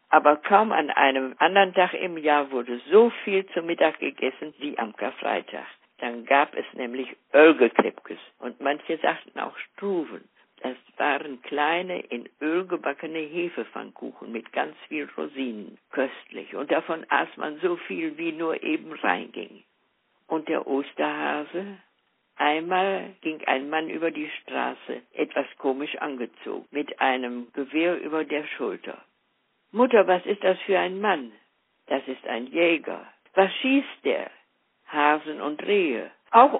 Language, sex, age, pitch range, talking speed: German, female, 60-79, 135-185 Hz, 140 wpm